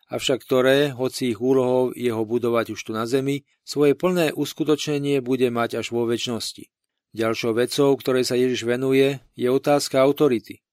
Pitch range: 120-145 Hz